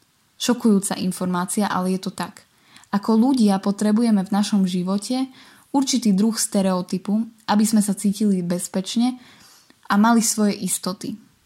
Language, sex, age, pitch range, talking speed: Slovak, female, 20-39, 190-215 Hz, 125 wpm